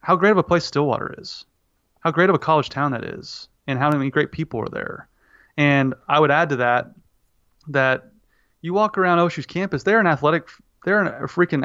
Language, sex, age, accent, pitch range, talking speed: English, male, 30-49, American, 125-160 Hz, 195 wpm